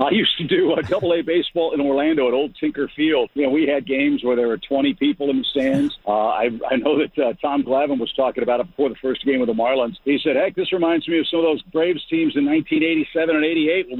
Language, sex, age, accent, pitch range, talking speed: English, male, 50-69, American, 135-205 Hz, 270 wpm